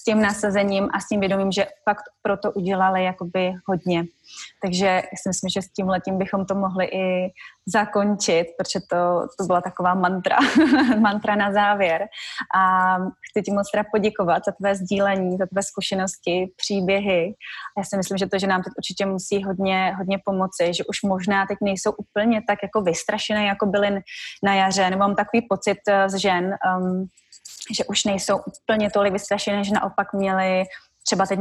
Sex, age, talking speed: female, 20-39, 175 wpm